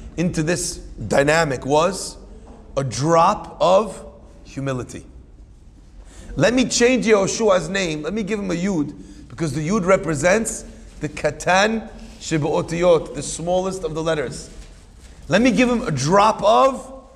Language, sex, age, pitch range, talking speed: English, male, 40-59, 165-230 Hz, 135 wpm